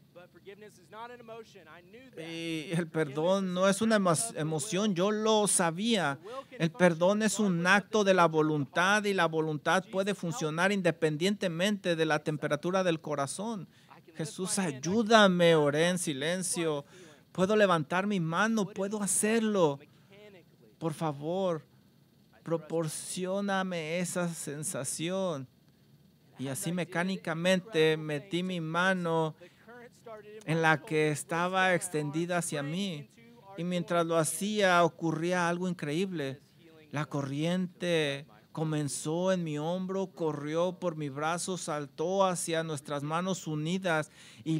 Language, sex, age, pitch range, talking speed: English, male, 40-59, 155-185 Hz, 110 wpm